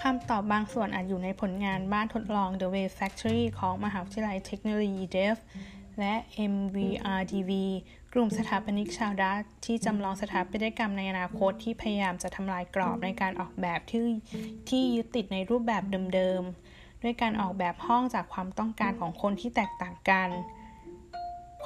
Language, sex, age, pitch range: Thai, female, 20-39, 190-230 Hz